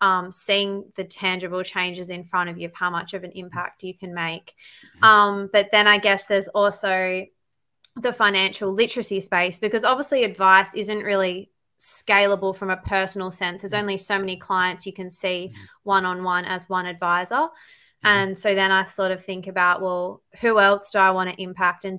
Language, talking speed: English, 185 wpm